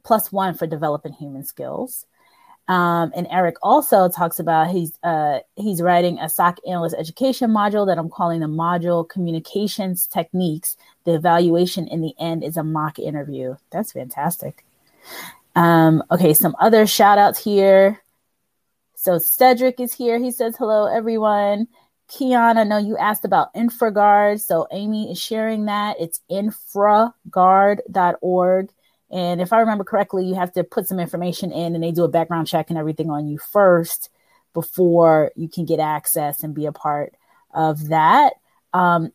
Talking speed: 160 wpm